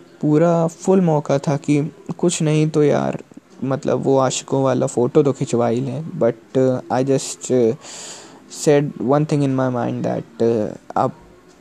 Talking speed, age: 145 wpm, 20-39